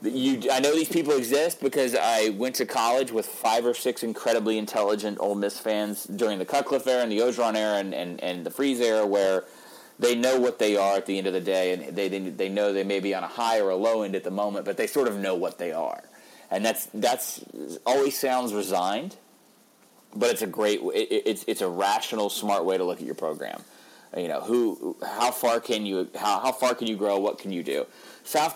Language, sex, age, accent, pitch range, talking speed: English, male, 30-49, American, 95-125 Hz, 235 wpm